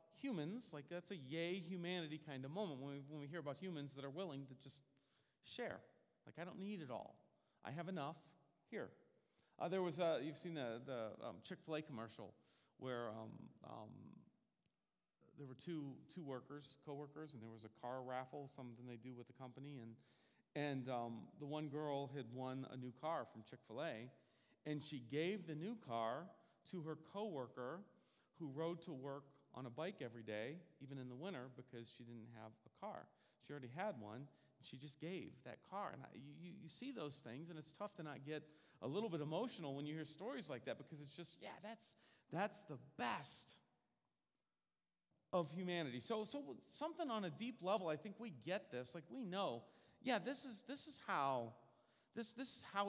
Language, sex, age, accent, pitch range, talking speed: English, male, 40-59, American, 130-180 Hz, 195 wpm